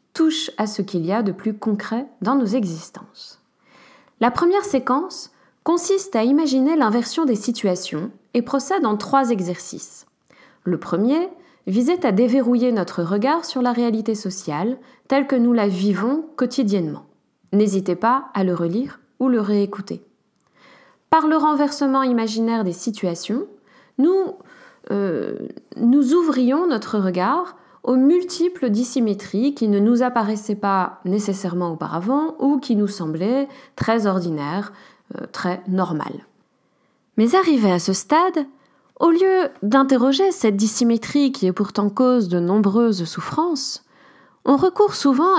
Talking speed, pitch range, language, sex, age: 135 wpm, 205-275 Hz, French, female, 20-39